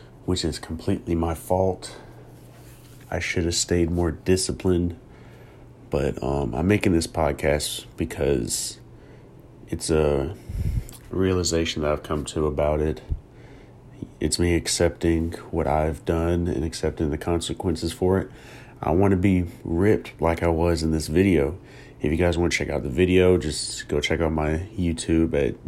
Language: English